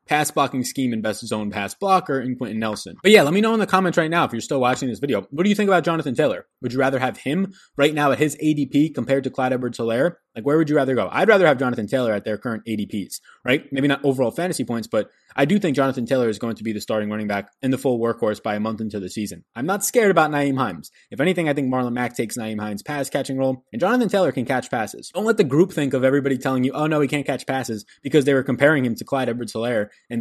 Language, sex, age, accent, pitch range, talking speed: English, male, 20-39, American, 115-150 Hz, 280 wpm